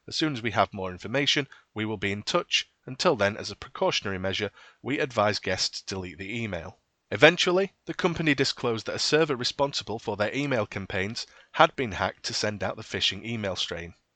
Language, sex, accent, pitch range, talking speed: English, male, British, 100-135 Hz, 200 wpm